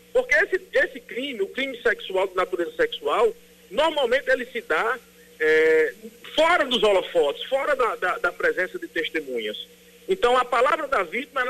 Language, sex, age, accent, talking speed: Portuguese, male, 50-69, Brazilian, 150 wpm